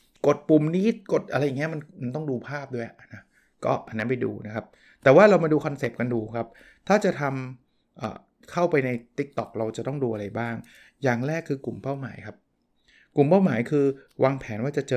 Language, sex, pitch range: Thai, male, 115-140 Hz